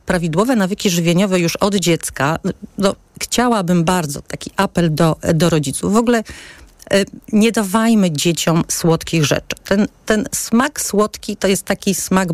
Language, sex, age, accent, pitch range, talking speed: Polish, female, 40-59, native, 165-200 Hz, 135 wpm